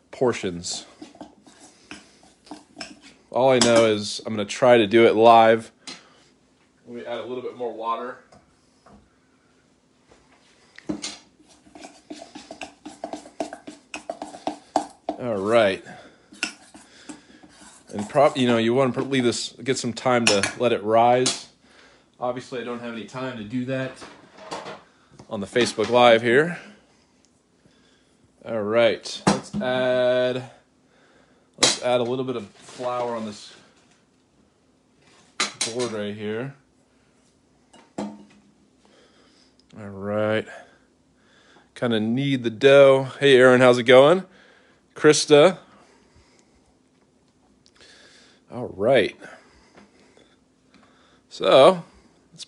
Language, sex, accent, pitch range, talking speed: English, male, American, 115-140 Hz, 100 wpm